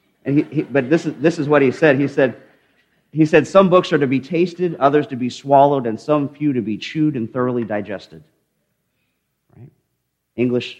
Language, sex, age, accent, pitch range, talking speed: English, male, 40-59, American, 115-165 Hz, 200 wpm